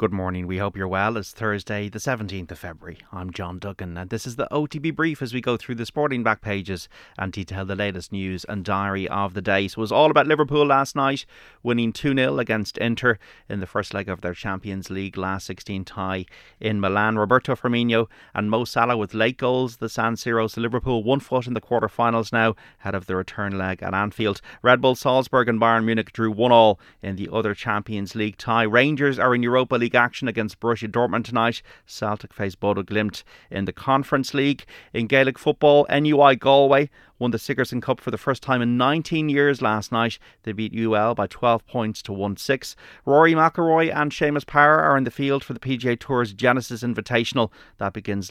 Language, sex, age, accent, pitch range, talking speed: English, male, 30-49, Irish, 100-125 Hz, 205 wpm